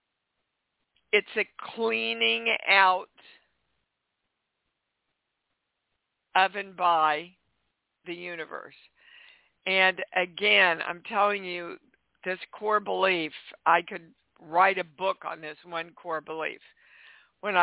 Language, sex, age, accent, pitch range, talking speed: English, female, 60-79, American, 160-205 Hz, 95 wpm